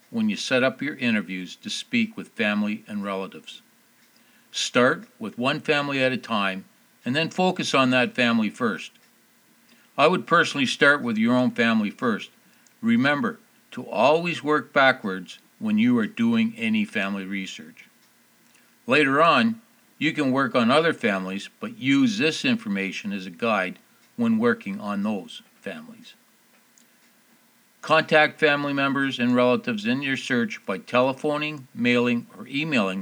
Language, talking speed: English, 145 wpm